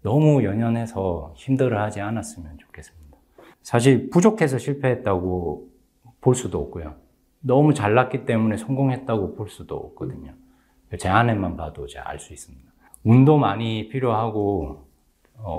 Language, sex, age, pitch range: Korean, male, 40-59, 90-125 Hz